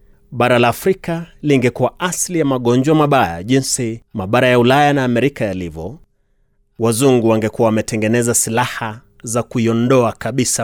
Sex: male